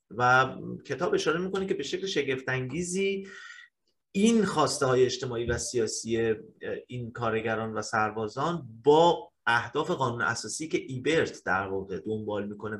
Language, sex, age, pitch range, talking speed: Persian, male, 30-49, 110-165 Hz, 130 wpm